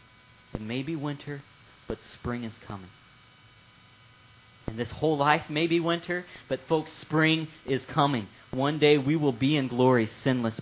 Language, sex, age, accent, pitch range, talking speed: English, male, 40-59, American, 110-130 Hz, 160 wpm